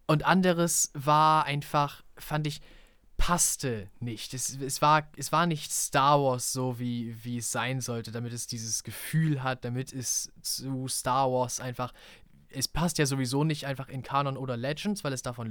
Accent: German